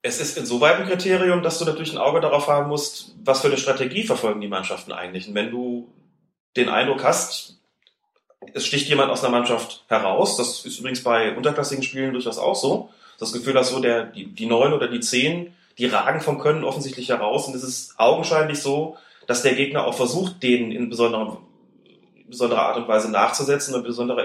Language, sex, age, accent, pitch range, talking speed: German, male, 30-49, German, 120-165 Hz, 195 wpm